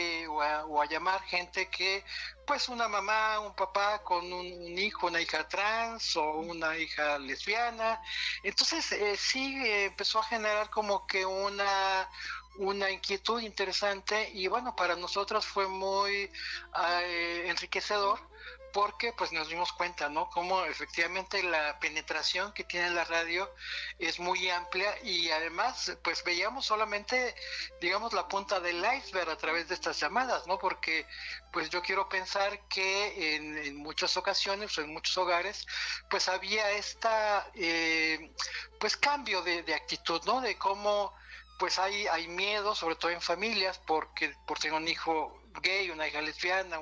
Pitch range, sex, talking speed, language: 165-205 Hz, male, 155 wpm, Spanish